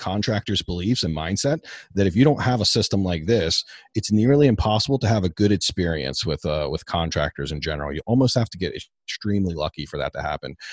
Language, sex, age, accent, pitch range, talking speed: English, male, 40-59, American, 80-105 Hz, 215 wpm